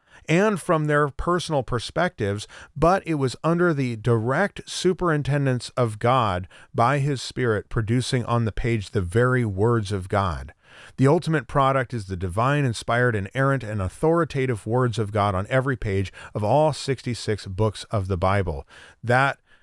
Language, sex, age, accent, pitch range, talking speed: English, male, 40-59, American, 110-140 Hz, 155 wpm